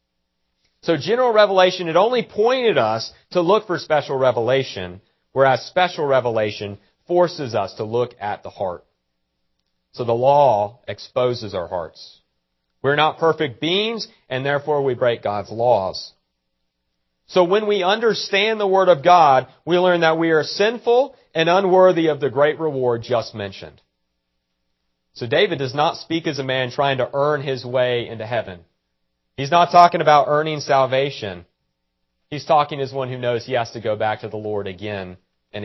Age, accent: 40-59, American